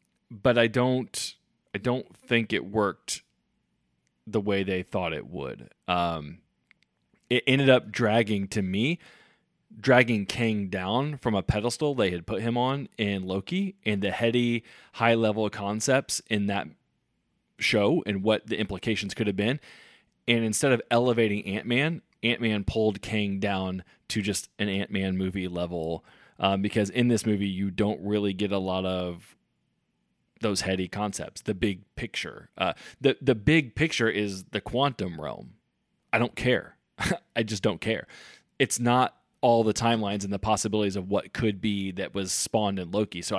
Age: 20-39